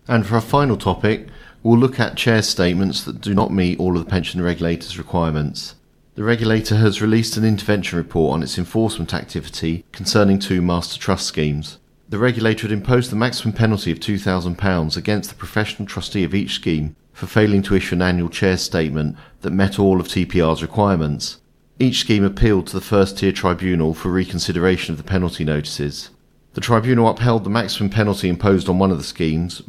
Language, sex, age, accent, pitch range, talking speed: English, male, 40-59, British, 85-105 Hz, 185 wpm